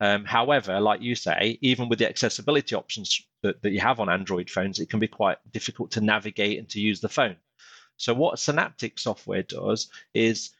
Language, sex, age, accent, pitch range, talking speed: English, male, 30-49, British, 110-135 Hz, 200 wpm